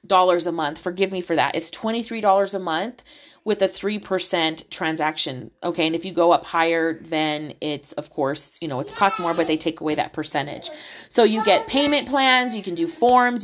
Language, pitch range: English, 175-225 Hz